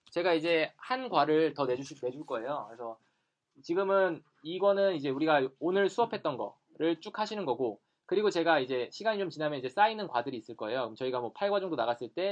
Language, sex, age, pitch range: Korean, male, 20-39, 140-195 Hz